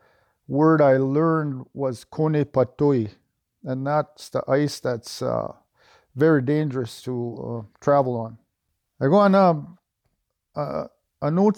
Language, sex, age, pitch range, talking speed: English, male, 50-69, 135-175 Hz, 120 wpm